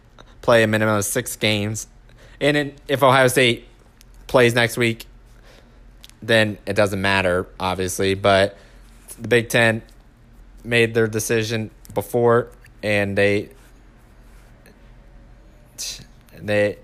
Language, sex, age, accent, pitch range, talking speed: English, male, 20-39, American, 105-120 Hz, 105 wpm